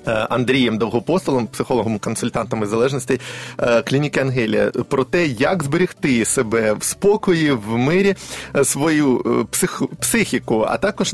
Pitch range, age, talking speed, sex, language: 120-150 Hz, 30-49, 100 wpm, male, Ukrainian